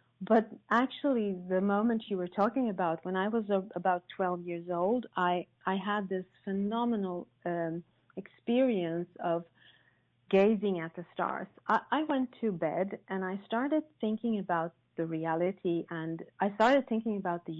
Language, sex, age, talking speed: English, female, 40-59, 155 wpm